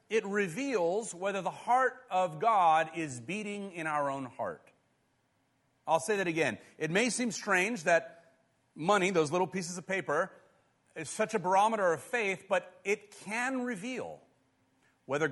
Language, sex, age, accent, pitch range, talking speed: English, male, 40-59, American, 140-200 Hz, 155 wpm